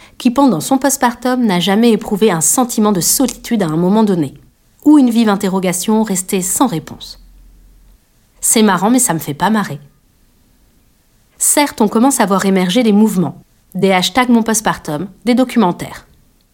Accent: French